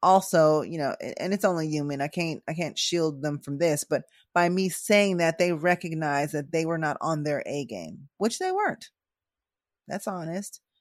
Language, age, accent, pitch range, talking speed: English, 30-49, American, 155-190 Hz, 185 wpm